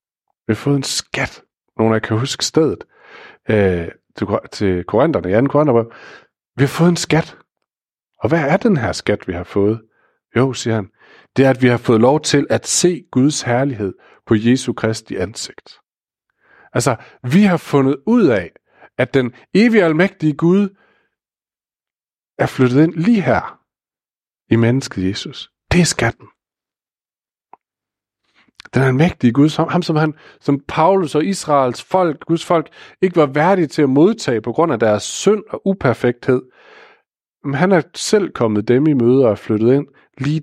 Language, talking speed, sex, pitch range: Danish, 160 wpm, male, 115-160 Hz